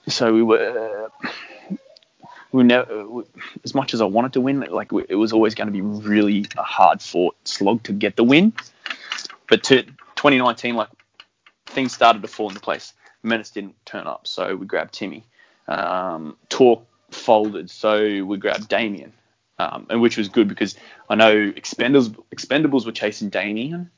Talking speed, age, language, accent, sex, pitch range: 170 wpm, 20-39, English, Australian, male, 110-155 Hz